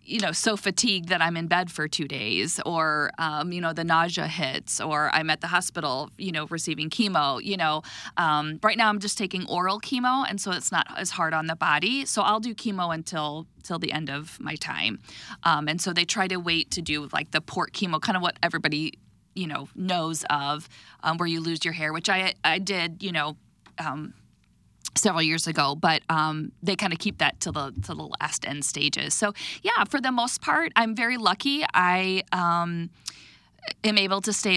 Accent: American